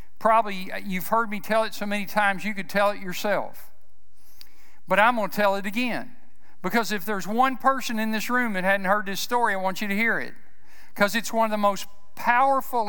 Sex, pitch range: male, 190-225 Hz